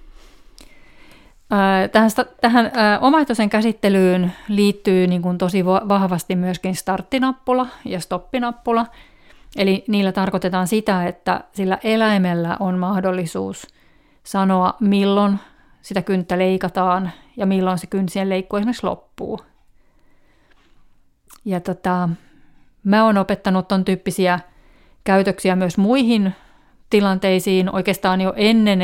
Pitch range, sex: 185-205 Hz, female